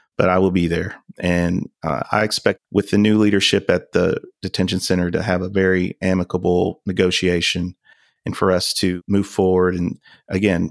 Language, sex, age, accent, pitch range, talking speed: English, male, 30-49, American, 90-95 Hz, 175 wpm